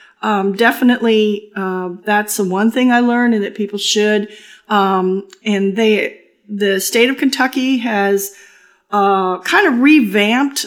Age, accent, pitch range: 50-69, American, 200-235 Hz